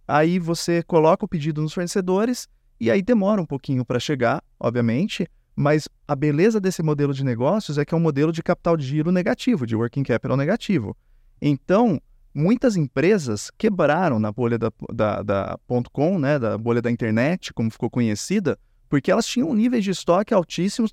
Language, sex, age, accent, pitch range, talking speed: Portuguese, male, 20-39, Brazilian, 125-185 Hz, 180 wpm